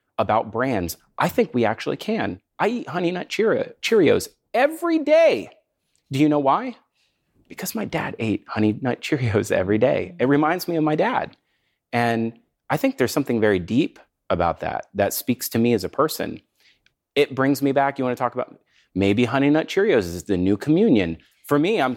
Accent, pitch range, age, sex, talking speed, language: American, 105-180 Hz, 30-49, male, 190 wpm, English